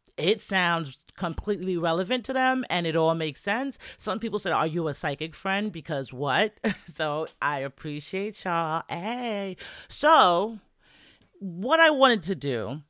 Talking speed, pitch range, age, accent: 150 wpm, 150-200 Hz, 40-59, American